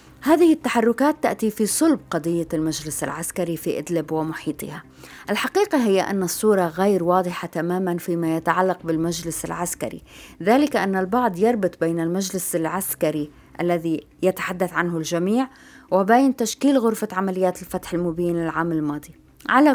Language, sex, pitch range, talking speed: Arabic, female, 165-215 Hz, 130 wpm